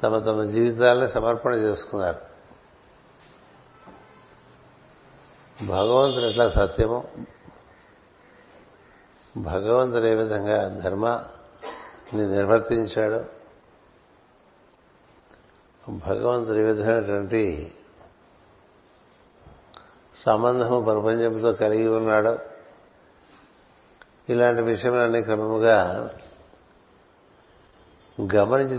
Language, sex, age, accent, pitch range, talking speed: Telugu, male, 60-79, native, 105-120 Hz, 50 wpm